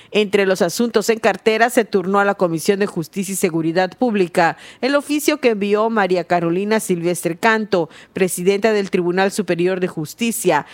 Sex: female